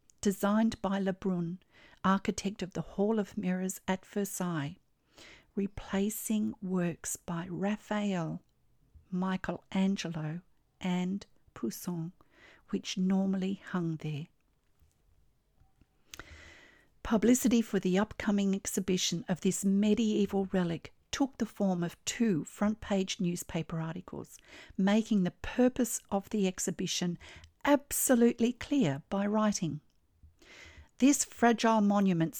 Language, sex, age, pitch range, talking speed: English, female, 50-69, 170-210 Hz, 95 wpm